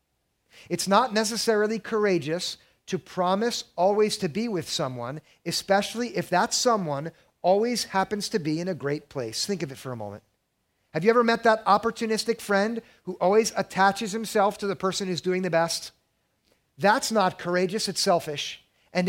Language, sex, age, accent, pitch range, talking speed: English, male, 50-69, American, 165-220 Hz, 165 wpm